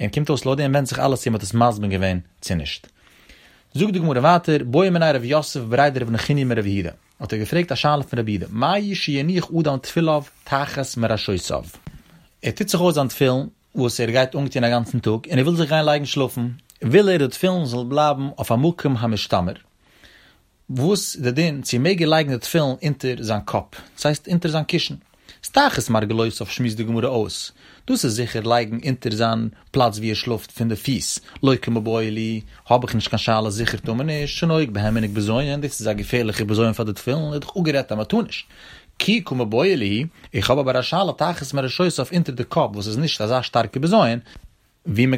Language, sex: Hebrew, male